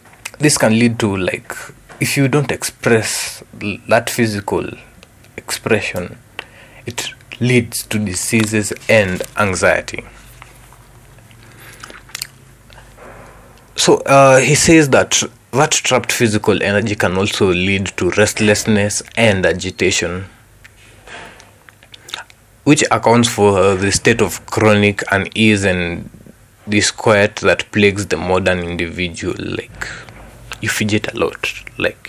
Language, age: Swahili, 30-49